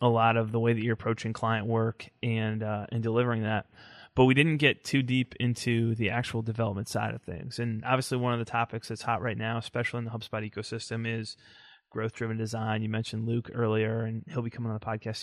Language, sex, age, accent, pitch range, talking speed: English, male, 20-39, American, 115-125 Hz, 225 wpm